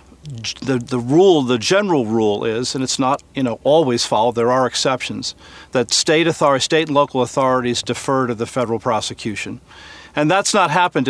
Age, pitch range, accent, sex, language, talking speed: 50-69, 125-145 Hz, American, male, English, 175 wpm